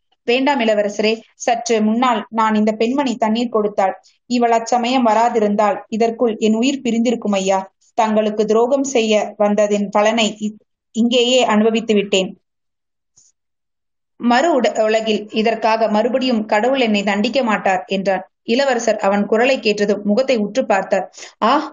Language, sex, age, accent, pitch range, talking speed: Tamil, female, 20-39, native, 210-250 Hz, 120 wpm